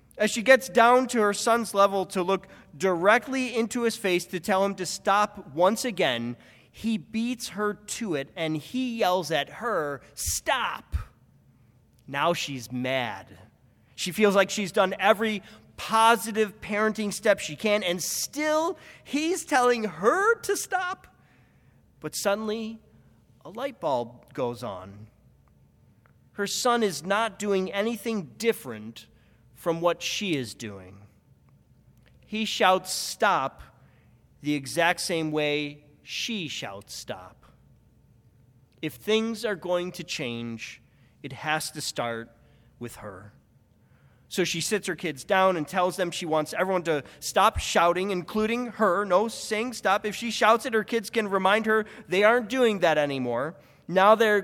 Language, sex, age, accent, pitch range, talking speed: English, male, 30-49, American, 135-215 Hz, 145 wpm